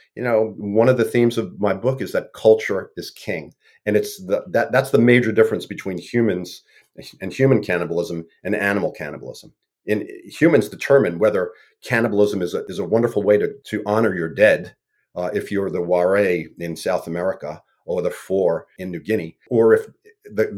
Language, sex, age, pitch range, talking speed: English, male, 40-59, 90-115 Hz, 185 wpm